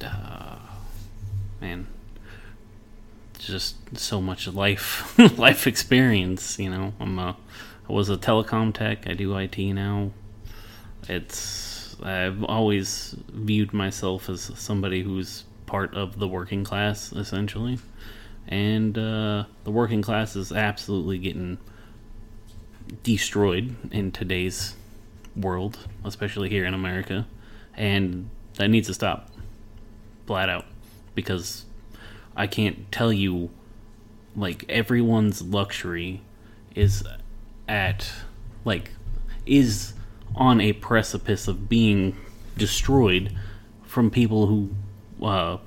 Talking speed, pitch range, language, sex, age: 105 wpm, 100-110 Hz, English, male, 30-49